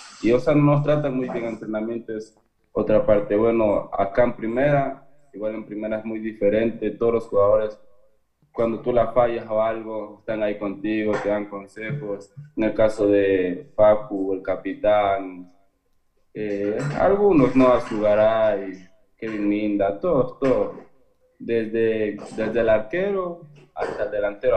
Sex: male